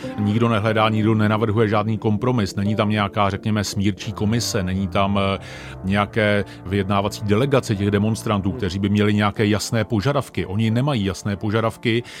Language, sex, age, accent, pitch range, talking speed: Czech, male, 40-59, native, 100-120 Hz, 145 wpm